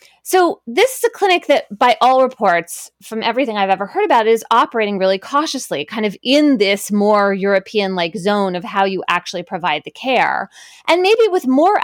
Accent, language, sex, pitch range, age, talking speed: American, English, female, 190-270 Hz, 20-39, 190 wpm